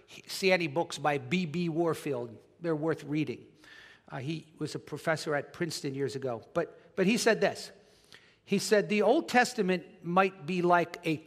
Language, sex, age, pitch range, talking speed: English, male, 50-69, 155-200 Hz, 175 wpm